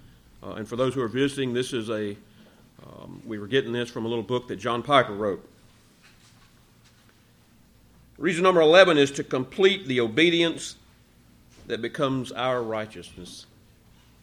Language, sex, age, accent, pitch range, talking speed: English, male, 50-69, American, 110-145 Hz, 150 wpm